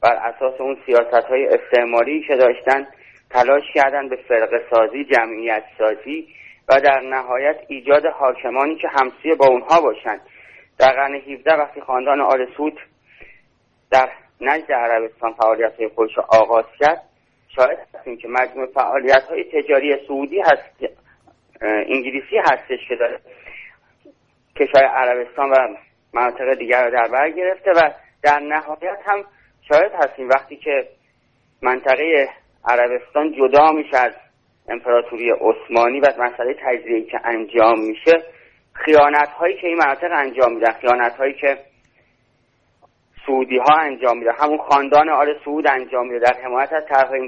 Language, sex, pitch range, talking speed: Persian, male, 125-150 Hz, 135 wpm